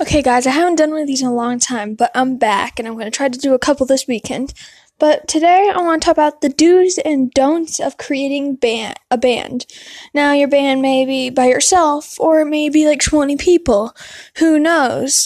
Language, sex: English, female